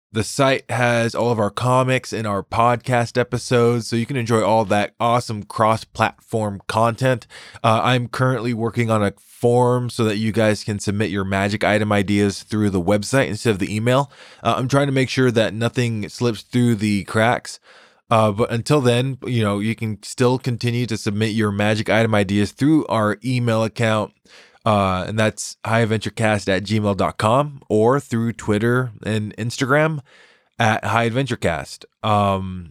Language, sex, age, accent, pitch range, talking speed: English, male, 20-39, American, 105-125 Hz, 165 wpm